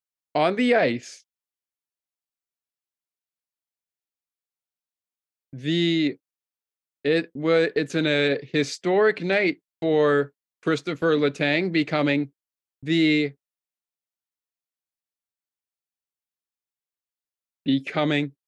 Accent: American